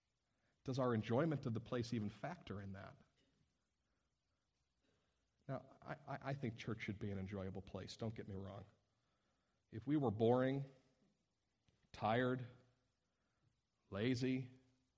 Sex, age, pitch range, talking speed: male, 40-59, 105-125 Hz, 125 wpm